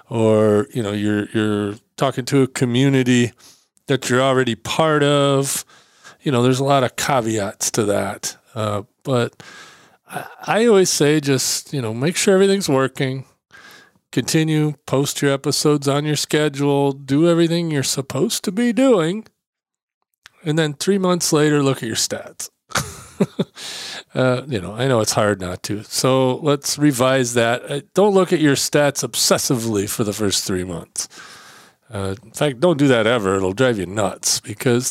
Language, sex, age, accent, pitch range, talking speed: English, male, 40-59, American, 120-150 Hz, 160 wpm